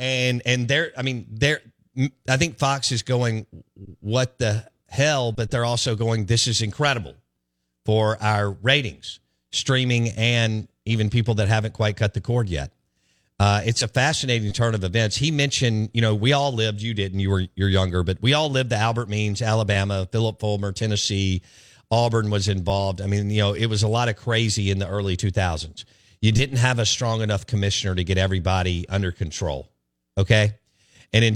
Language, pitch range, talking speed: English, 95-115 Hz, 190 wpm